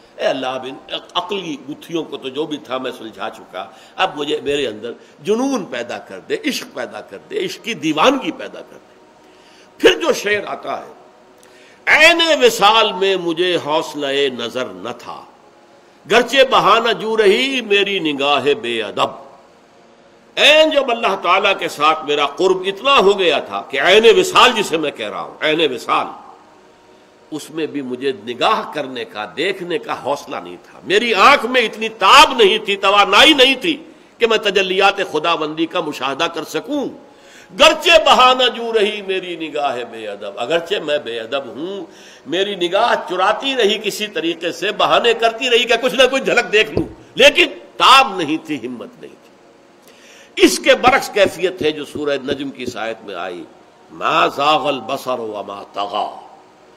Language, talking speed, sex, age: Urdu, 160 wpm, male, 60-79